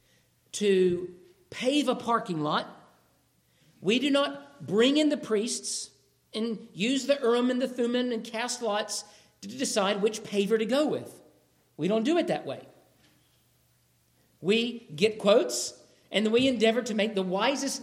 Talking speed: 150 wpm